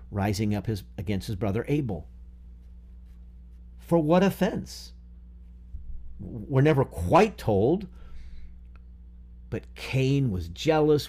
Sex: male